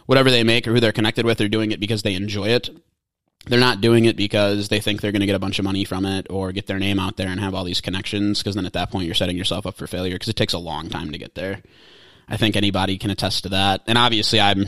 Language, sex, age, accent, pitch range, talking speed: English, male, 20-39, American, 95-110 Hz, 300 wpm